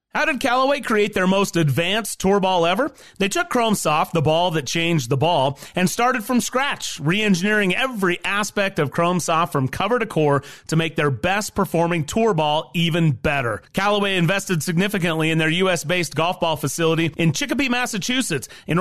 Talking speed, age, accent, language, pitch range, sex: 180 wpm, 30-49, American, English, 160-210 Hz, male